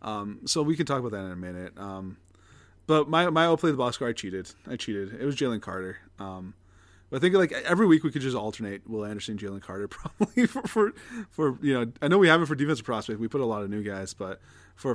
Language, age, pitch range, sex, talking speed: English, 20-39, 100-155 Hz, male, 260 wpm